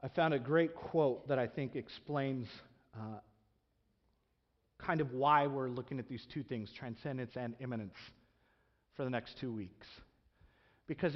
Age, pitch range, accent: 40-59, 120-165 Hz, American